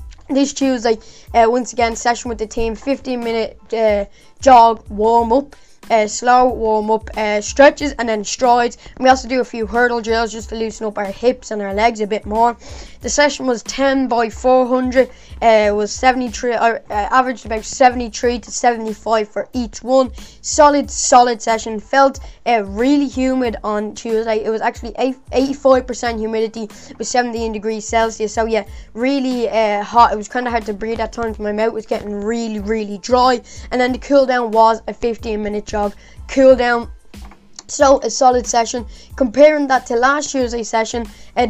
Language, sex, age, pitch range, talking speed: English, female, 10-29, 220-255 Hz, 190 wpm